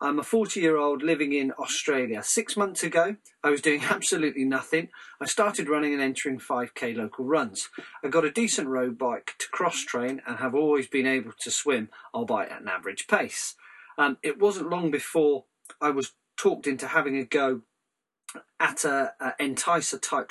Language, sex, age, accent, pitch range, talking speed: English, male, 40-59, British, 130-185 Hz, 185 wpm